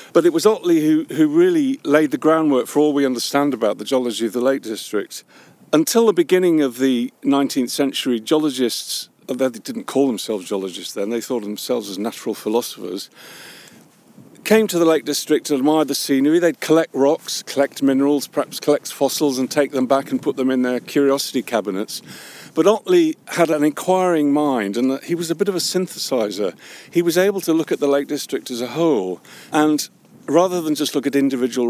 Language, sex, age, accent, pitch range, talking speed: English, male, 50-69, British, 125-165 Hz, 195 wpm